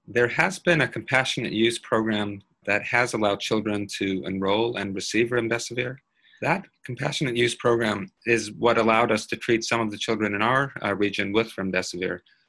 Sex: male